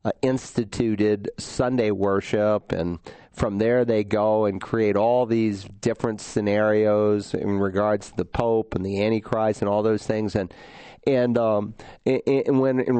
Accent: American